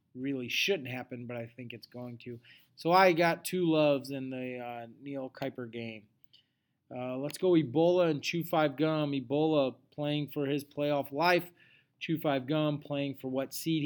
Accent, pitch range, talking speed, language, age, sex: American, 130-160 Hz, 160 wpm, English, 30-49, male